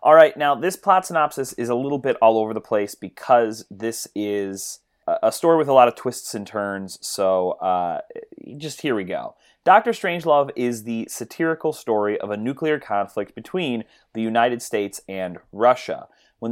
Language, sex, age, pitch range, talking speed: English, male, 30-49, 110-155 Hz, 175 wpm